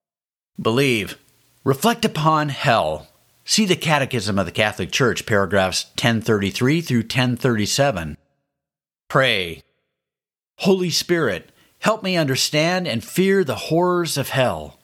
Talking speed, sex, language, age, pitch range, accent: 110 wpm, male, English, 50-69, 115-170 Hz, American